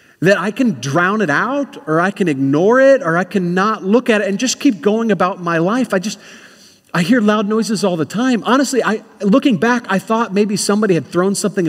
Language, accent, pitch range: English, American, 155-220 Hz